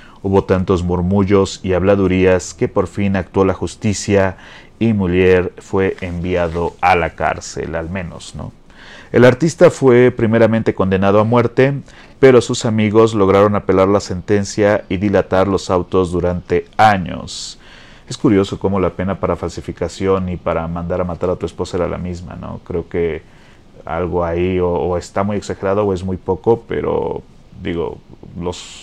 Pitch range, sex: 90-100 Hz, male